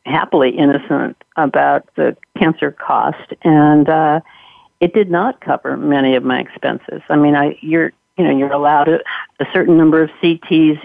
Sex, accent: female, American